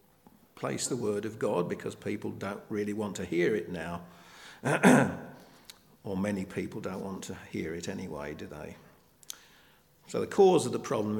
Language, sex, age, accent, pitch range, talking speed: English, male, 50-69, British, 95-120 Hz, 165 wpm